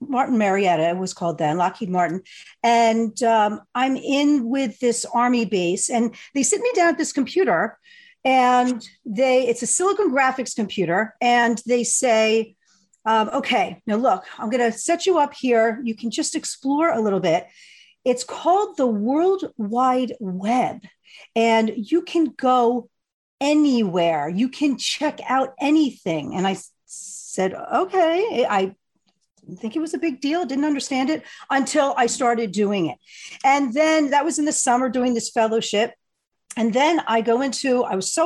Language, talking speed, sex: English, 170 wpm, female